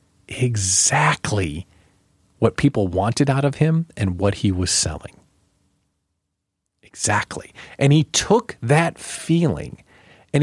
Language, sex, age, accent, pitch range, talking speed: English, male, 40-59, American, 105-160 Hz, 110 wpm